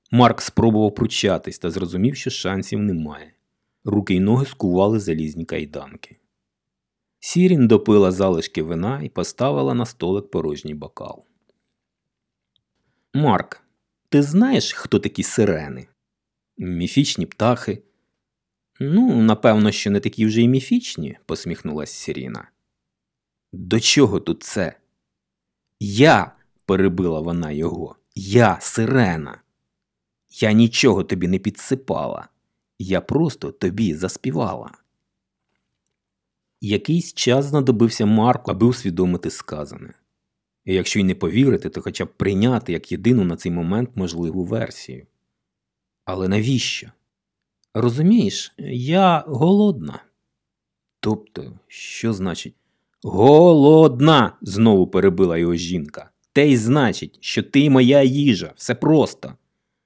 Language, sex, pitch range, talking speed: Ukrainian, male, 95-135 Hz, 110 wpm